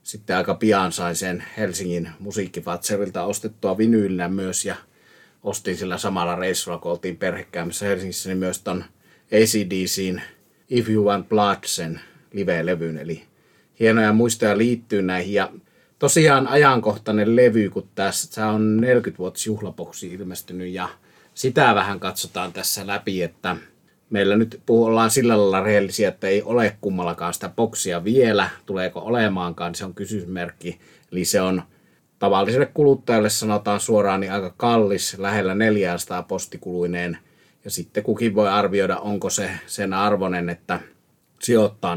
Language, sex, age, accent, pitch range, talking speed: Finnish, male, 30-49, native, 90-110 Hz, 130 wpm